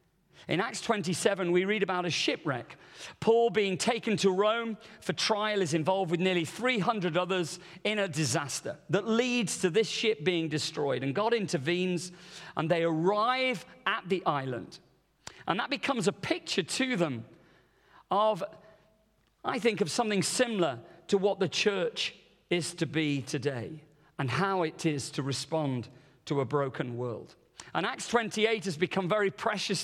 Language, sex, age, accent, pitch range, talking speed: English, male, 40-59, British, 155-210 Hz, 155 wpm